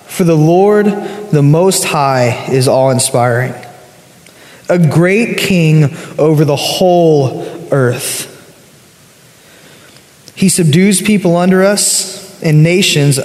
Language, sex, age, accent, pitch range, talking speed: English, male, 20-39, American, 145-185 Hz, 100 wpm